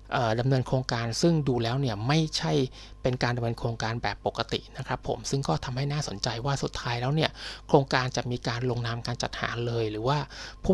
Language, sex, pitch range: Thai, male, 115-140 Hz